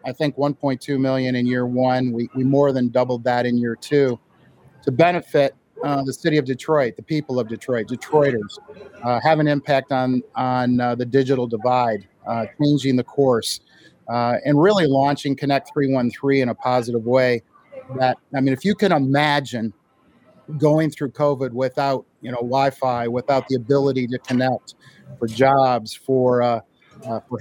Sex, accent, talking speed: male, American, 170 wpm